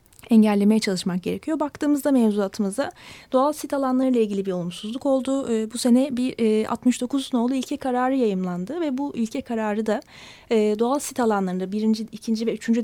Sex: female